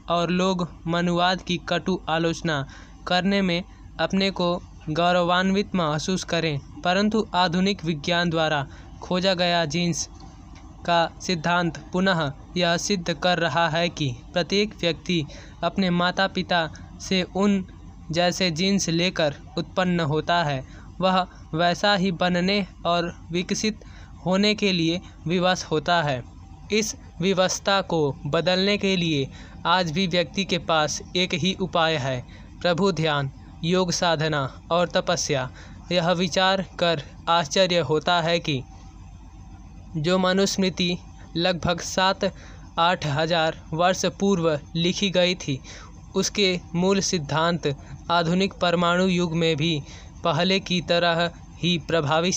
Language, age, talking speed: Hindi, 20-39, 120 wpm